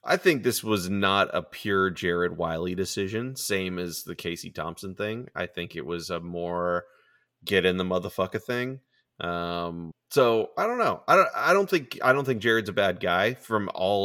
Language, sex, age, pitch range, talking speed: English, male, 20-39, 85-100 Hz, 195 wpm